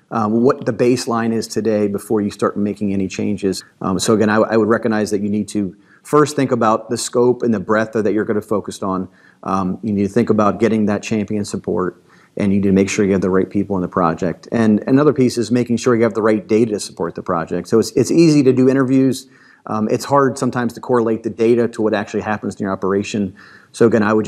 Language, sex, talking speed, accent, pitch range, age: English, male, 255 wpm, American, 100-115 Hz, 40-59